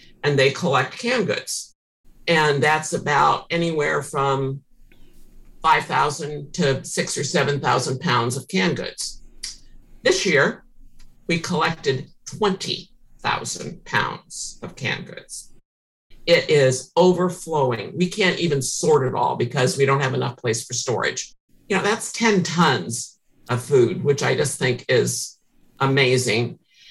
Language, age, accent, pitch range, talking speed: English, 50-69, American, 145-190 Hz, 130 wpm